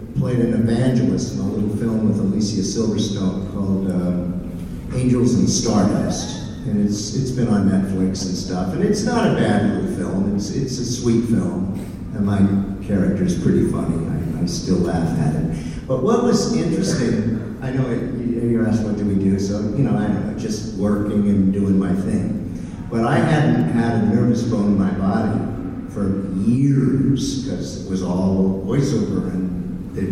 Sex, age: male, 50-69